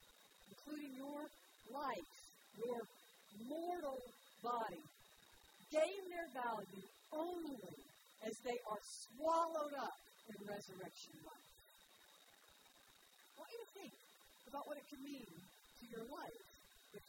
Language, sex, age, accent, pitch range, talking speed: English, female, 50-69, American, 235-300 Hz, 110 wpm